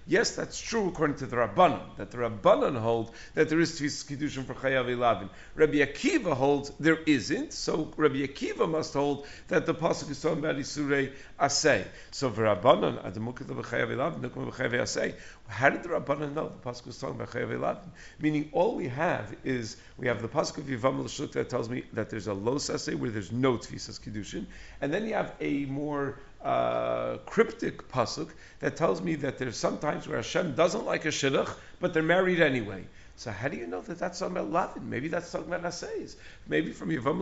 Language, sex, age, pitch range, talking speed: English, male, 50-69, 115-150 Hz, 190 wpm